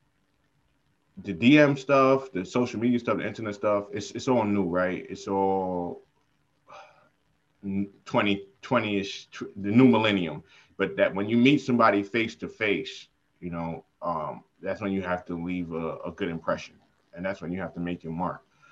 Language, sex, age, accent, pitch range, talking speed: English, male, 20-39, American, 85-110 Hz, 160 wpm